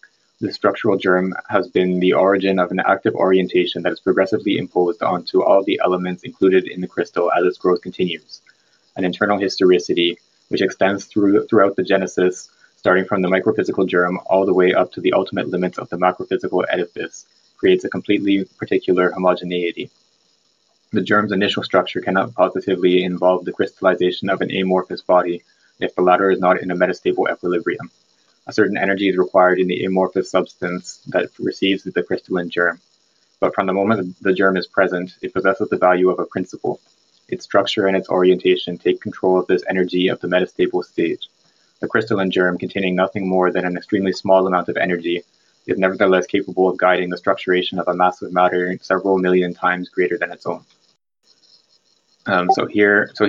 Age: 20-39